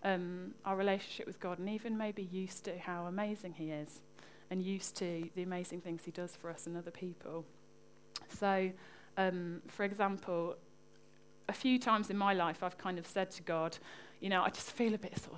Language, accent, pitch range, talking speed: English, British, 170-205 Hz, 200 wpm